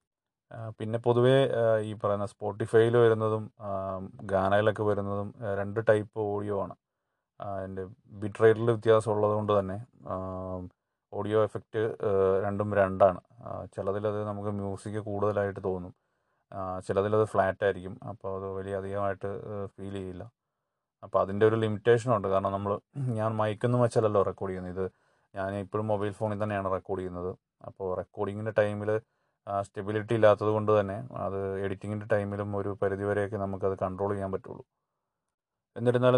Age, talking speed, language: 30-49, 115 wpm, Malayalam